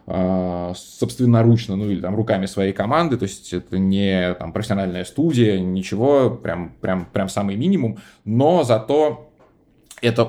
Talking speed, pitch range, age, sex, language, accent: 135 wpm, 95-120 Hz, 20-39, male, Russian, native